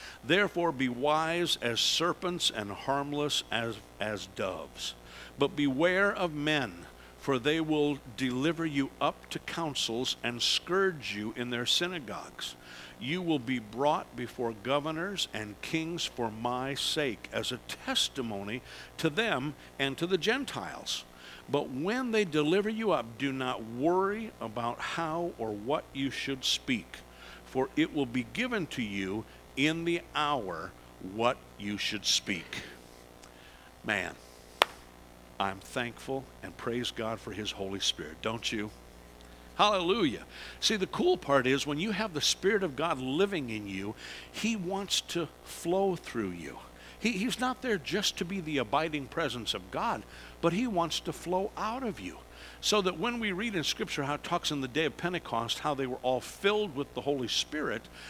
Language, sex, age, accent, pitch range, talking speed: English, male, 60-79, American, 110-170 Hz, 160 wpm